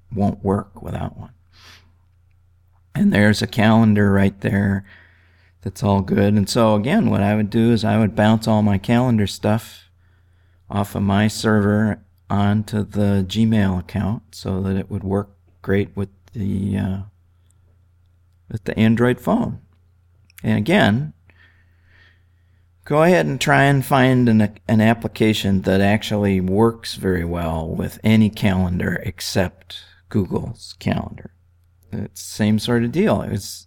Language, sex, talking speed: English, male, 140 wpm